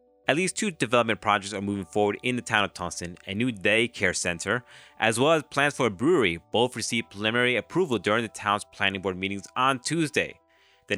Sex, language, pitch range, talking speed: male, English, 100-135 Hz, 200 wpm